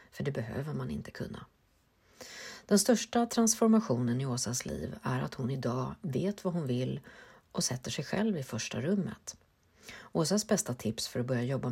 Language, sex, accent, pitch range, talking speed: Swedish, female, native, 120-185 Hz, 175 wpm